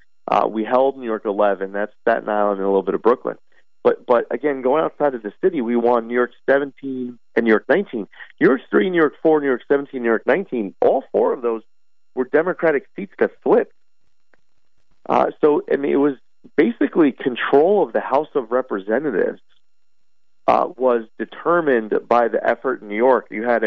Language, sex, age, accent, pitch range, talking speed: English, male, 40-59, American, 105-130 Hz, 195 wpm